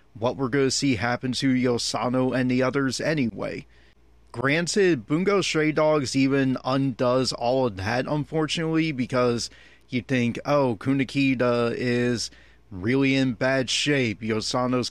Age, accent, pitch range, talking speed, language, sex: 30-49, American, 120-150 Hz, 130 wpm, English, male